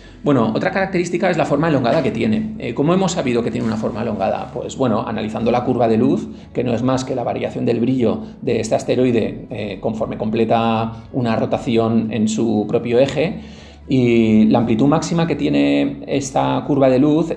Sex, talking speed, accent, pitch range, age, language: male, 195 wpm, Spanish, 115-135 Hz, 40-59, Spanish